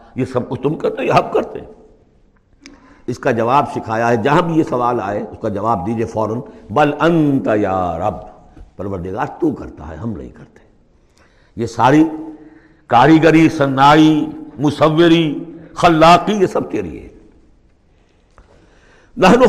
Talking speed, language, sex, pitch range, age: 125 wpm, Urdu, male, 105-175 Hz, 60-79